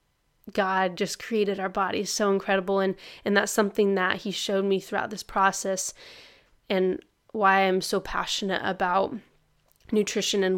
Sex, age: female, 20-39